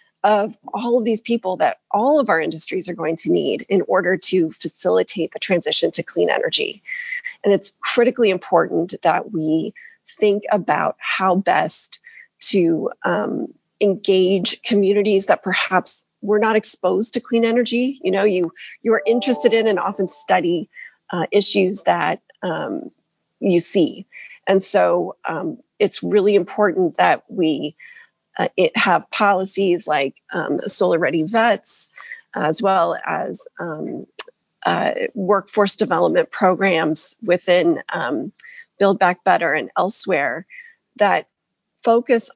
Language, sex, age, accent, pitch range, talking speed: English, female, 30-49, American, 185-240 Hz, 135 wpm